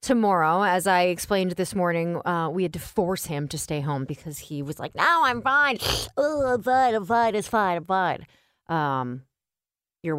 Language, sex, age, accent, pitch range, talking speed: English, female, 30-49, American, 175-245 Hz, 195 wpm